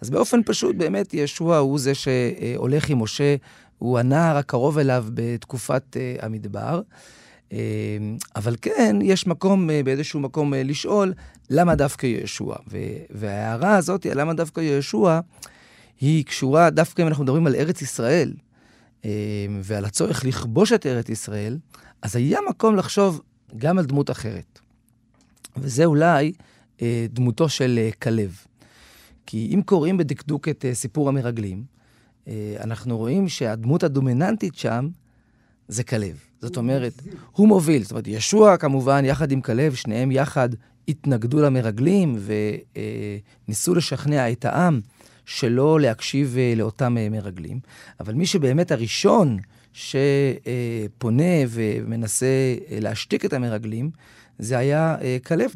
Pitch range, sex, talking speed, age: 115-155 Hz, male, 135 wpm, 30-49